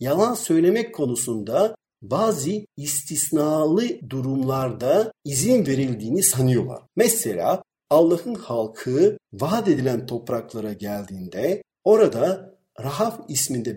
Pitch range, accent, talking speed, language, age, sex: 120-185 Hz, native, 85 wpm, Turkish, 50-69, male